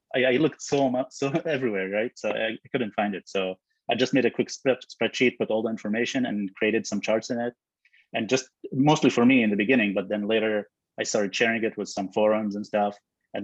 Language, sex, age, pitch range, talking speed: English, male, 30-49, 105-130 Hz, 225 wpm